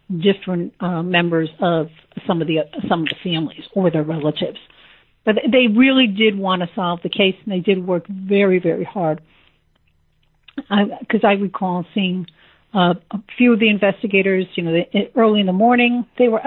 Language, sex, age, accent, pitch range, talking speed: English, female, 50-69, American, 170-220 Hz, 180 wpm